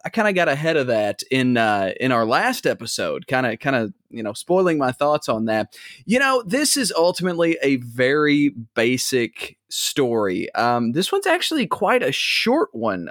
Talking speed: 190 wpm